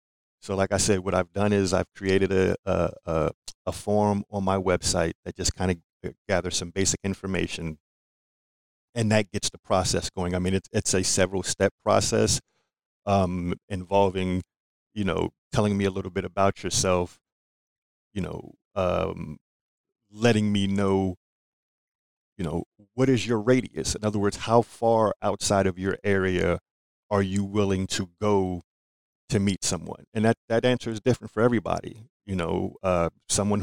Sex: male